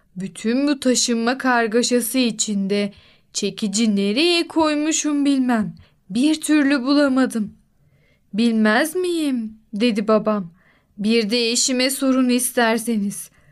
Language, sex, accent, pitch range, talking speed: Turkish, female, native, 215-260 Hz, 95 wpm